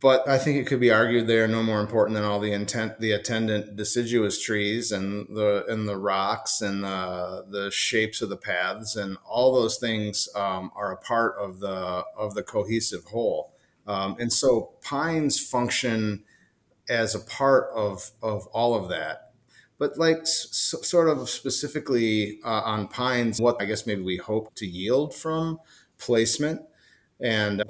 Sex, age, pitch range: male, 30-49, 105-125 Hz